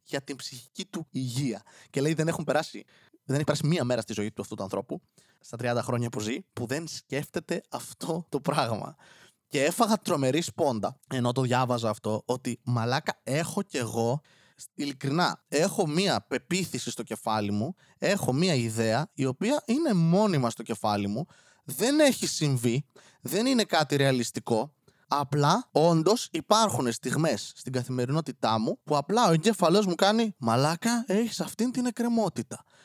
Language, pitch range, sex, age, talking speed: Greek, 120-185 Hz, male, 20-39, 155 wpm